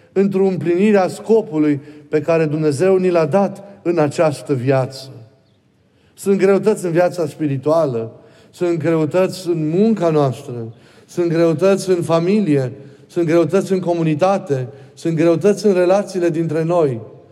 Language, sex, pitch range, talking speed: Romanian, male, 145-185 Hz, 130 wpm